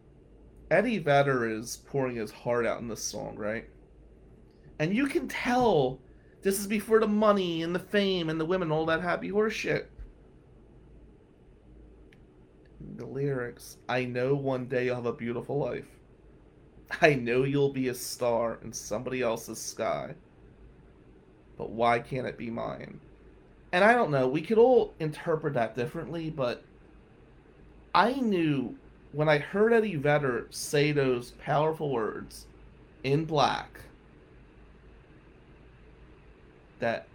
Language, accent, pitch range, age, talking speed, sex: English, American, 105-145 Hz, 30-49, 130 wpm, male